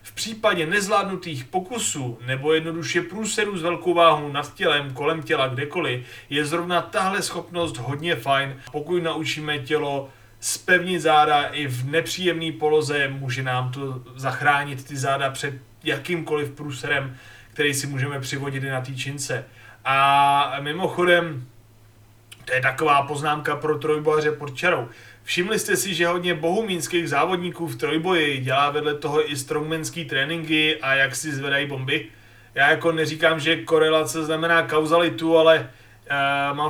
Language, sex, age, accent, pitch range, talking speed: Czech, male, 30-49, native, 135-175 Hz, 140 wpm